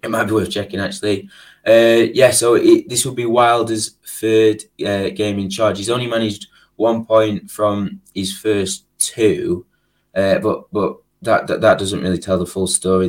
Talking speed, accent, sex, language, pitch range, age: 185 wpm, British, male, English, 95-110 Hz, 20-39